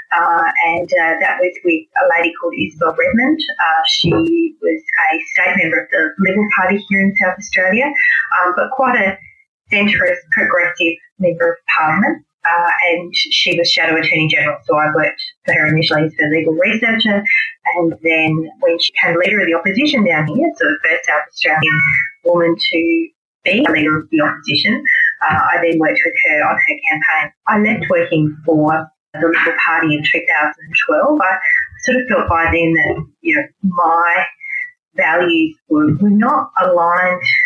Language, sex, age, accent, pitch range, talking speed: English, female, 30-49, Australian, 165-270 Hz, 175 wpm